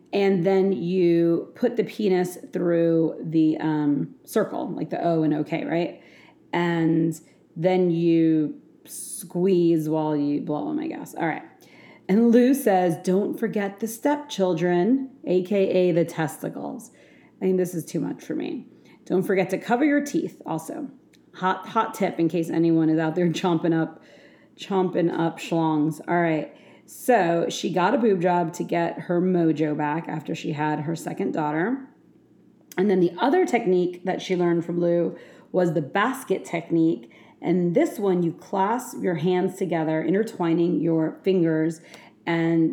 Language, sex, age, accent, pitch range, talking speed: English, female, 40-59, American, 160-195 Hz, 155 wpm